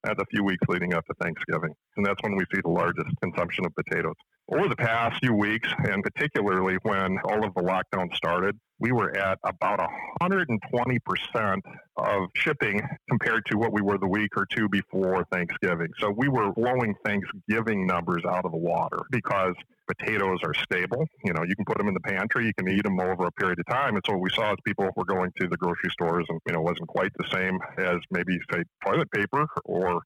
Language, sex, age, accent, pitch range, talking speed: English, male, 50-69, American, 95-125 Hz, 210 wpm